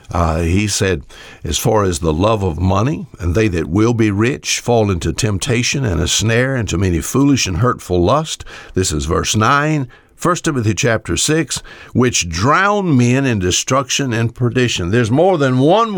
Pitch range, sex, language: 90-125 Hz, male, English